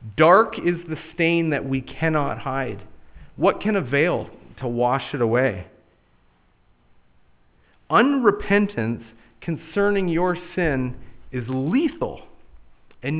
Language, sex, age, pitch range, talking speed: English, male, 40-59, 115-170 Hz, 100 wpm